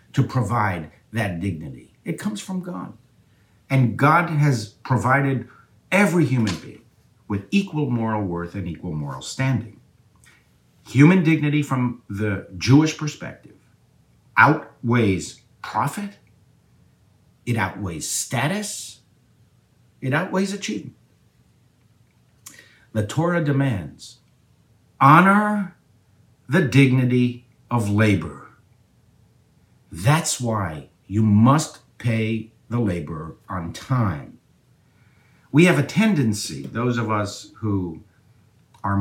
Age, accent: 60-79, American